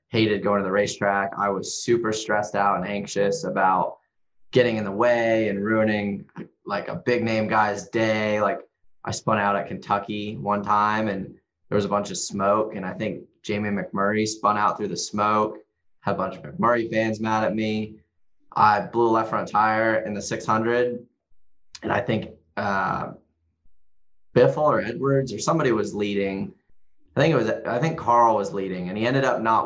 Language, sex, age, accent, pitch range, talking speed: English, male, 20-39, American, 100-110 Hz, 190 wpm